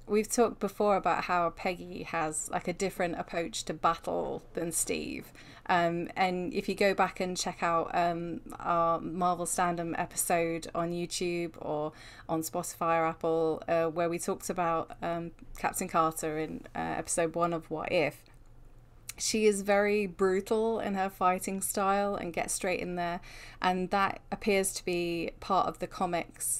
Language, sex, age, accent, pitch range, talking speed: English, female, 20-39, British, 170-195 Hz, 165 wpm